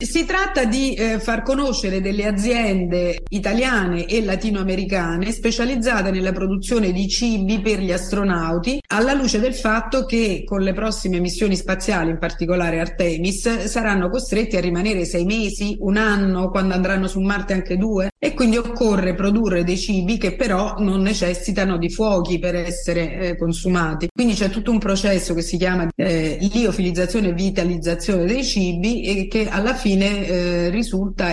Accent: native